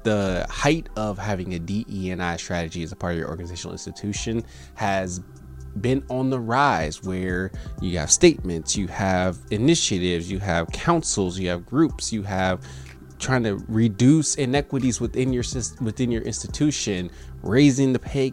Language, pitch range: English, 85-120 Hz